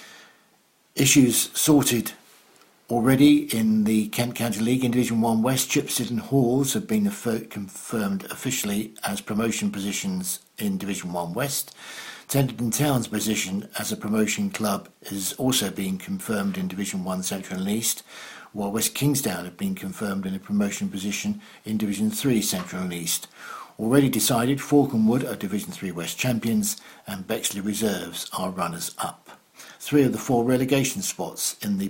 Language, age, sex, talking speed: English, 60-79, male, 150 wpm